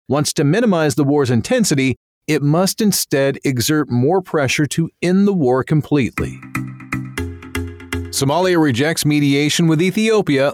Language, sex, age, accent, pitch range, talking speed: English, male, 40-59, American, 125-170 Hz, 125 wpm